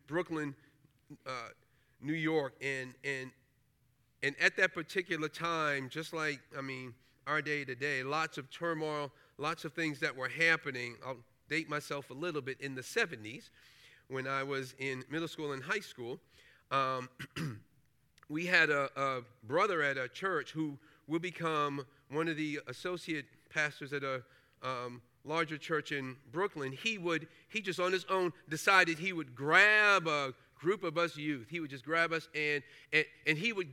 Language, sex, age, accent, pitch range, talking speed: English, male, 40-59, American, 140-180 Hz, 170 wpm